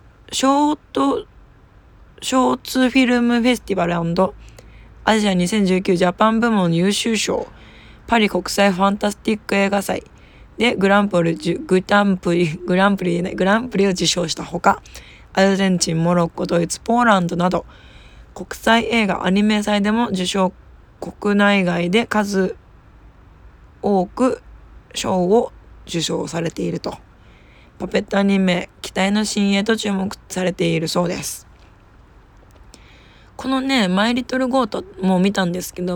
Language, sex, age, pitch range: Japanese, female, 20-39, 170-205 Hz